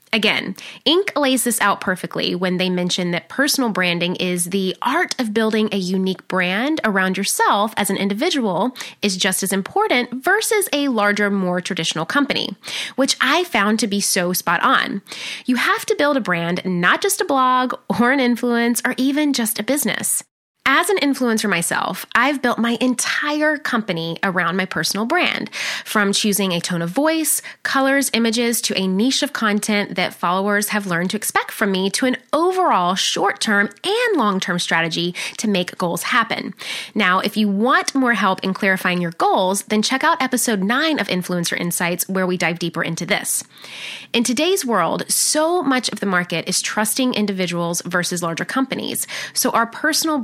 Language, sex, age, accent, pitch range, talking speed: English, female, 20-39, American, 185-260 Hz, 175 wpm